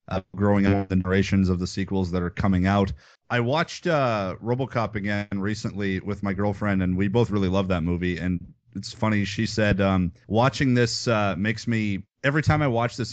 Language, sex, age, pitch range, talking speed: English, male, 30-49, 100-130 Hz, 200 wpm